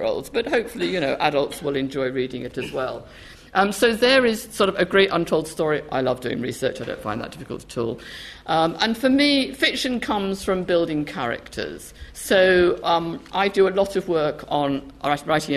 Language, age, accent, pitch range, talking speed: English, 50-69, British, 145-205 Hz, 195 wpm